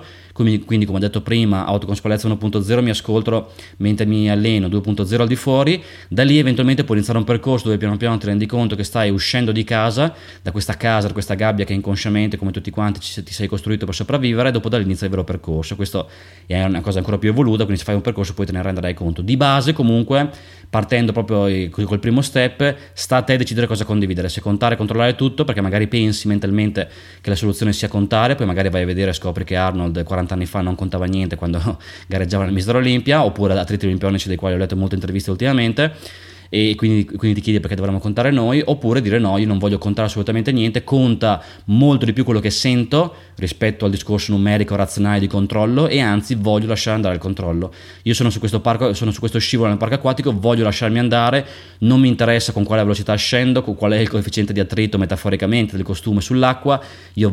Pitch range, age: 95-115 Hz, 20-39